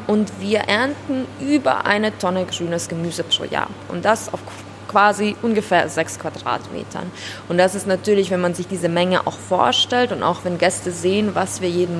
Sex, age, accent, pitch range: female, 20-39, German, 180-220 Hz